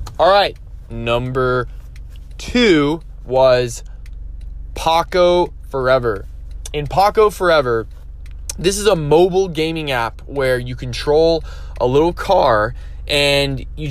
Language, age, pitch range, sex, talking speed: English, 20-39, 110-160 Hz, male, 100 wpm